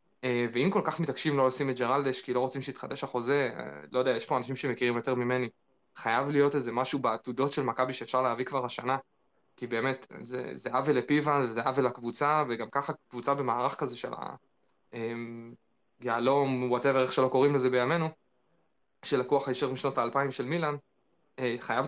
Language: Hebrew